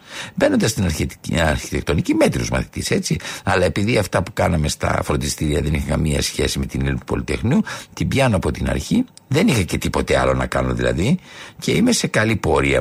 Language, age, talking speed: Greek, 60-79, 185 wpm